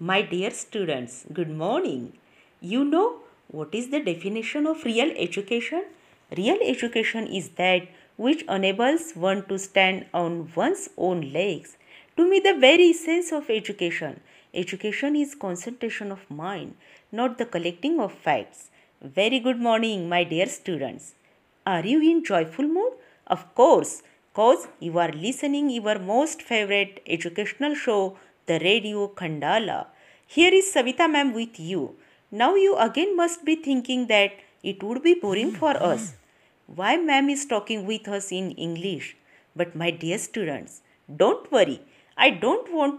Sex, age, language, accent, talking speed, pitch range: female, 50-69, Marathi, native, 145 wpm, 180-285 Hz